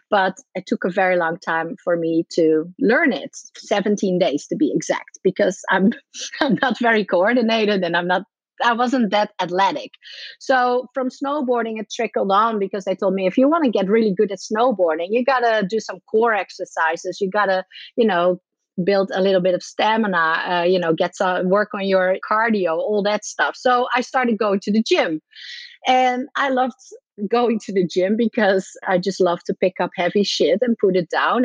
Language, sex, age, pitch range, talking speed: English, female, 30-49, 185-240 Hz, 195 wpm